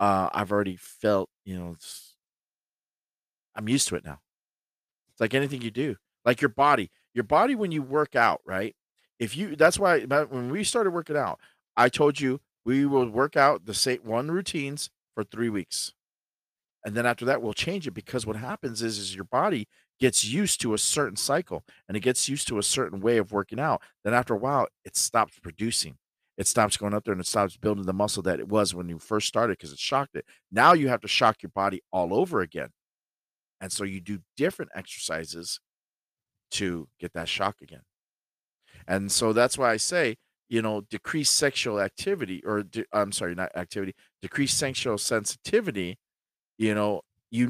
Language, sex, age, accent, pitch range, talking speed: English, male, 40-59, American, 100-135 Hz, 195 wpm